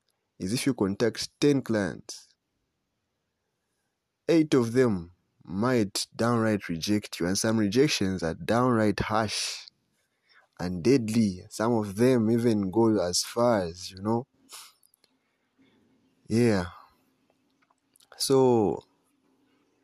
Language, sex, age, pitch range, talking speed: English, male, 30-49, 100-125 Hz, 100 wpm